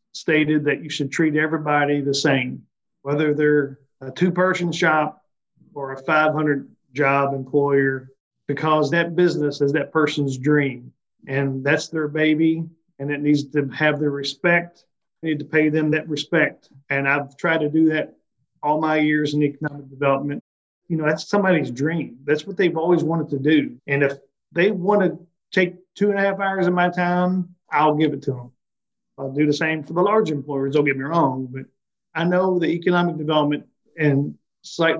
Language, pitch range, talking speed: English, 140-165 Hz, 180 wpm